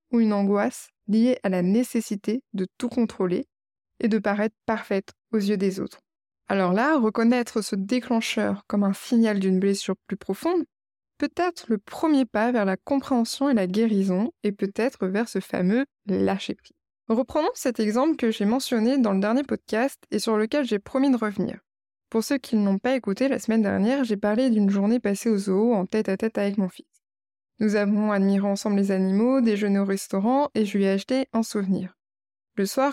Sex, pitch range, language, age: female, 195-245 Hz, French, 20-39